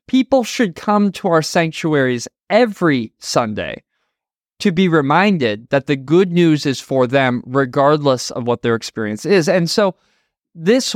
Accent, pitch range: American, 135-180 Hz